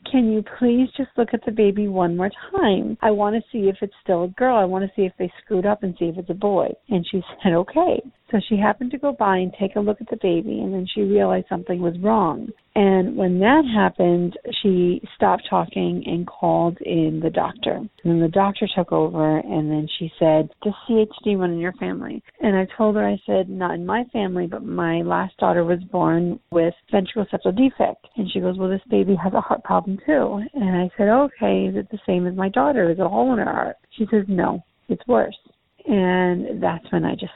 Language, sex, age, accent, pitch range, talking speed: English, female, 40-59, American, 175-220 Hz, 230 wpm